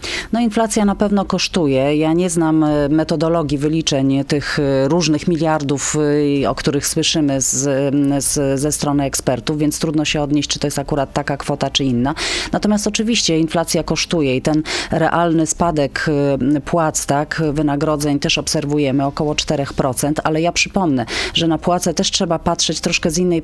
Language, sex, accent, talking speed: Polish, female, native, 155 wpm